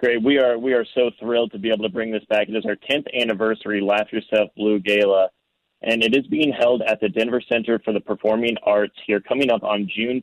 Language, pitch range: English, 105-115 Hz